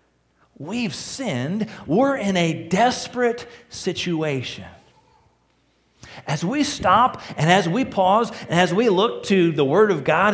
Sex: male